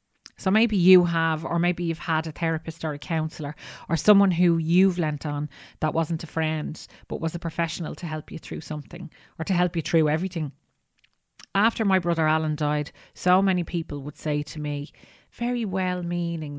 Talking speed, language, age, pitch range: 190 wpm, English, 30-49, 160-195 Hz